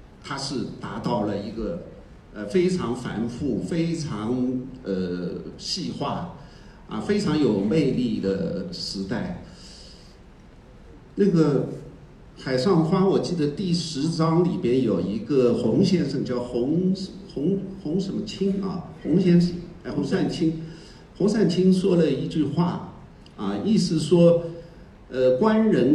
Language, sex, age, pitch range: Chinese, male, 50-69, 140-185 Hz